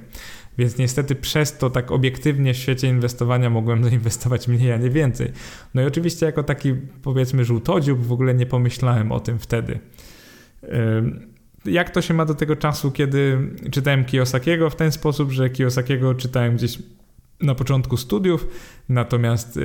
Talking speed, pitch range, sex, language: 155 wpm, 120-140 Hz, male, Polish